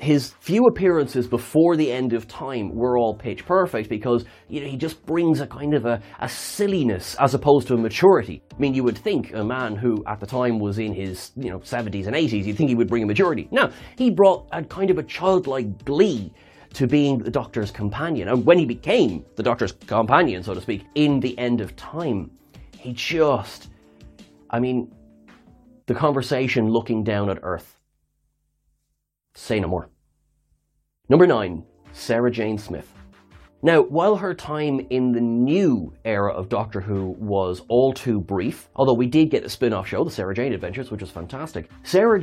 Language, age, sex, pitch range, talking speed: English, 30-49, male, 105-145 Hz, 190 wpm